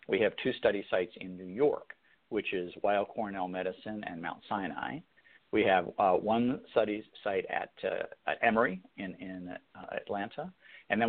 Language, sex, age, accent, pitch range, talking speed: English, male, 50-69, American, 95-125 Hz, 175 wpm